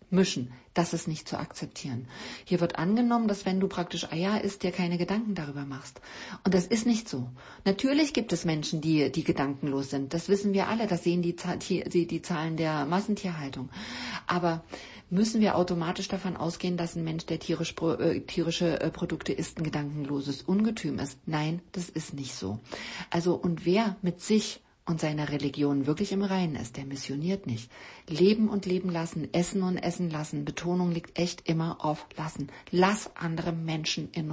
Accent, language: German, German